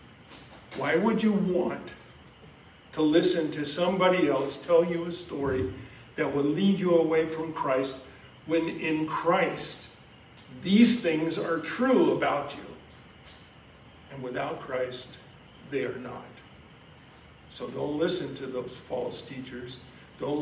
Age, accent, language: 50-69, American, English